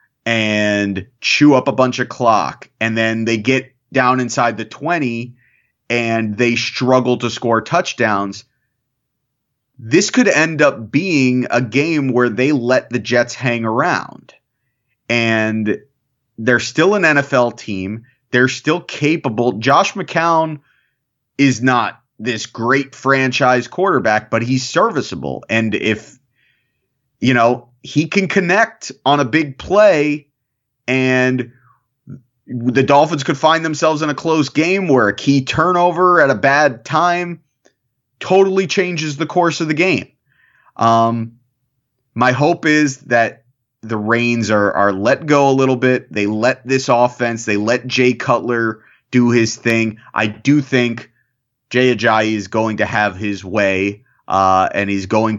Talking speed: 140 wpm